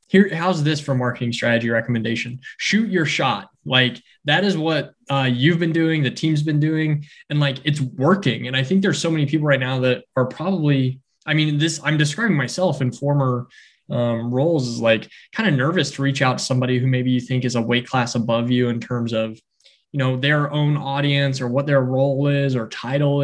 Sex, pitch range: male, 125-150 Hz